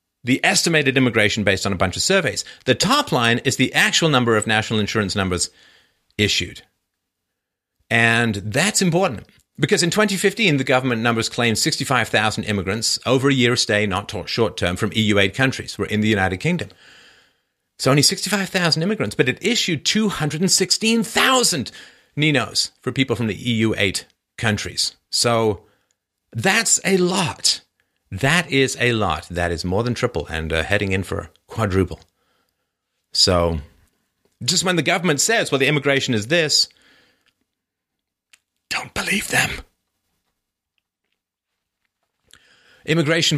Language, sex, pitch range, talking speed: English, male, 105-155 Hz, 135 wpm